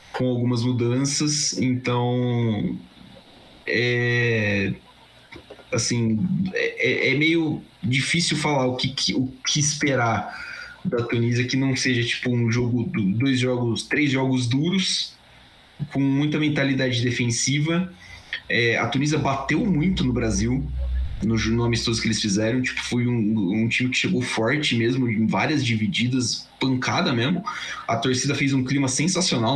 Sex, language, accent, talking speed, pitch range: male, Portuguese, Brazilian, 135 wpm, 115-140 Hz